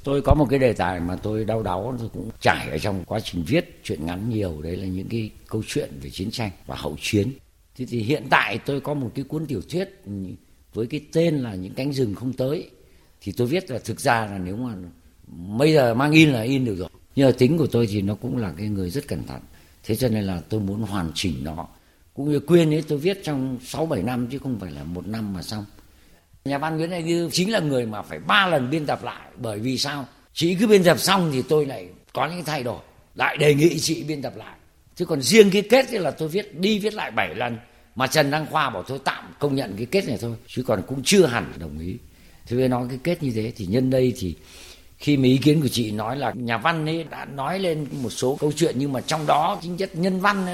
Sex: male